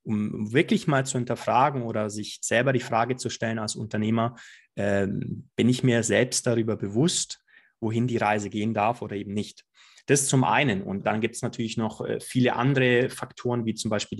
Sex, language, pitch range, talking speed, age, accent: male, German, 105-125 Hz, 185 wpm, 20-39, German